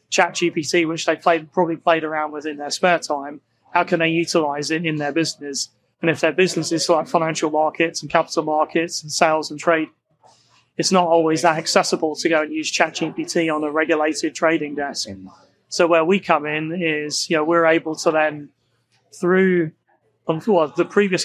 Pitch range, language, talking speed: 155-170 Hz, English, 190 wpm